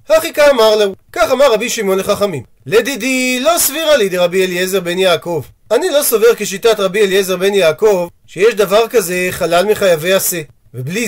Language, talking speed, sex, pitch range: Hebrew, 170 wpm, male, 185-255 Hz